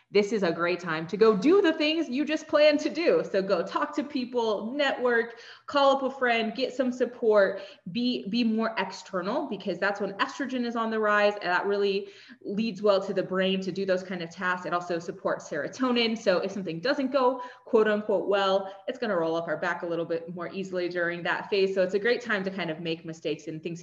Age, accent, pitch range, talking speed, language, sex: 20-39, American, 175-230 Hz, 230 wpm, English, female